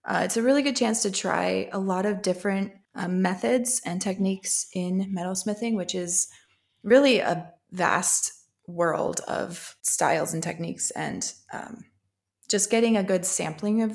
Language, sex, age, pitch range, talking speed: English, female, 20-39, 175-215 Hz, 155 wpm